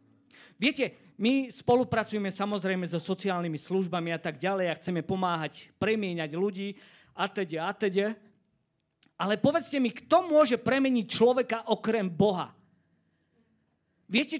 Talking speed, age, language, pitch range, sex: 115 wpm, 40-59, Slovak, 180-260 Hz, male